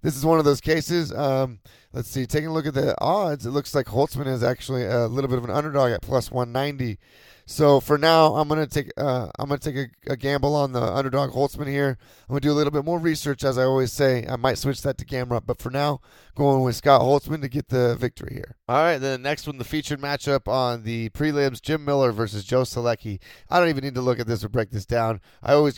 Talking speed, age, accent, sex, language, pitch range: 250 wpm, 30-49, American, male, English, 120-145 Hz